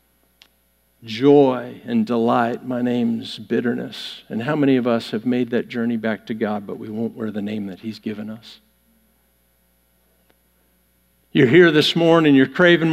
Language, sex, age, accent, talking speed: English, male, 50-69, American, 160 wpm